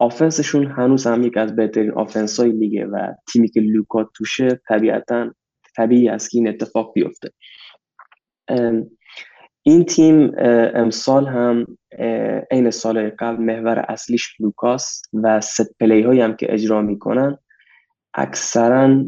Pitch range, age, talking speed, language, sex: 110-125 Hz, 20-39, 120 wpm, Persian, male